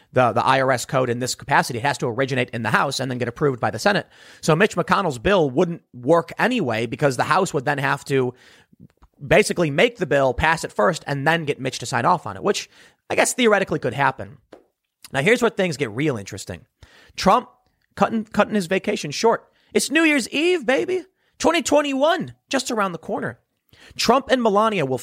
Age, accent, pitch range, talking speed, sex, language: 30-49, American, 125-180 Hz, 200 wpm, male, English